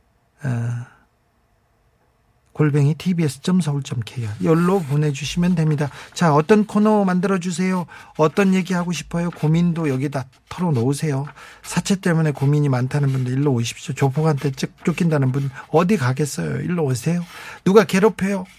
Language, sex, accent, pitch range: Korean, male, native, 140-180 Hz